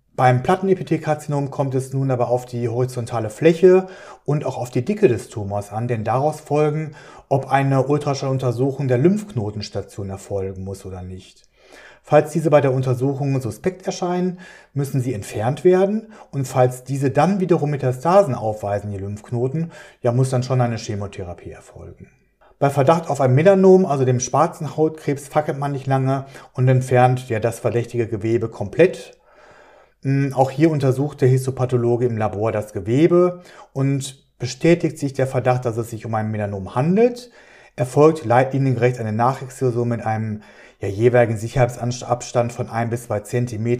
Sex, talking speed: male, 155 wpm